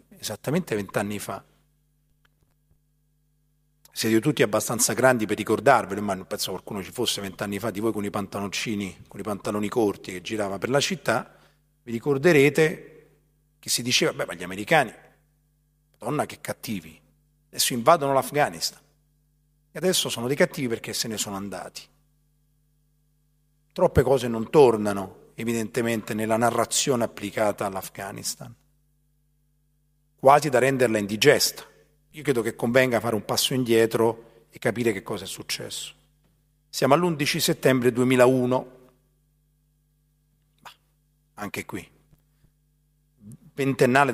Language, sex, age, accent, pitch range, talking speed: Italian, male, 40-59, native, 115-150 Hz, 120 wpm